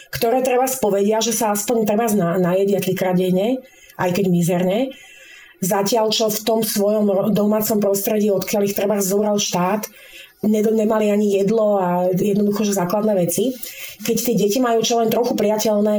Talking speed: 155 wpm